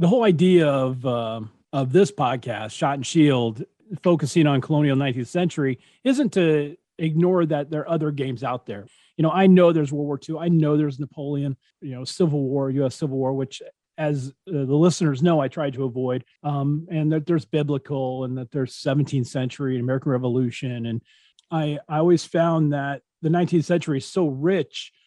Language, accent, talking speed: English, American, 190 wpm